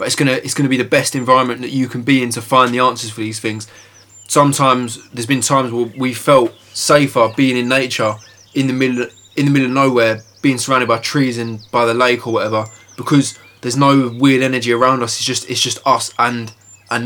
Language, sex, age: English, male, 20-39